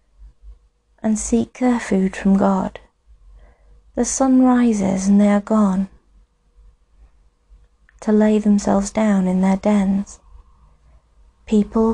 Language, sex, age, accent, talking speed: English, female, 30-49, British, 105 wpm